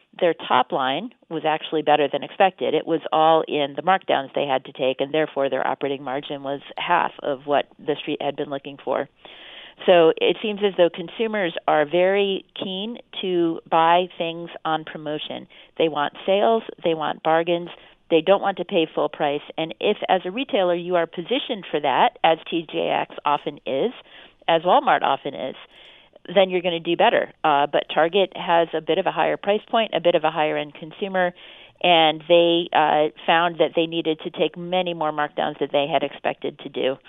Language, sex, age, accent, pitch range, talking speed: English, female, 40-59, American, 155-190 Hz, 195 wpm